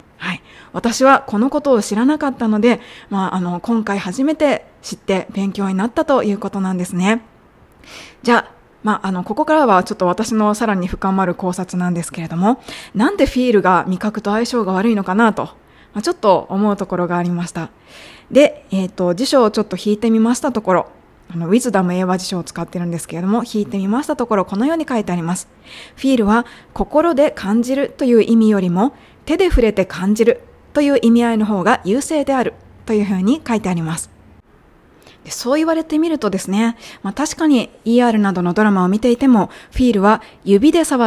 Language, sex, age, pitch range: Japanese, female, 20-39, 195-245 Hz